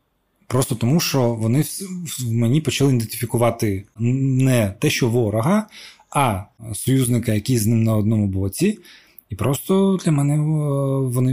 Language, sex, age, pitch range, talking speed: Ukrainian, male, 20-39, 105-135 Hz, 130 wpm